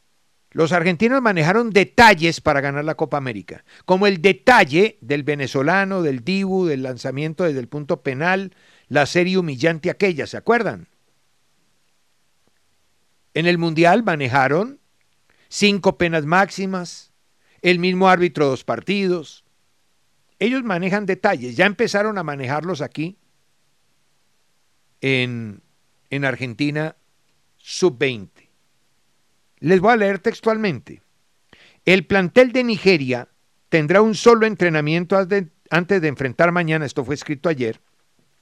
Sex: male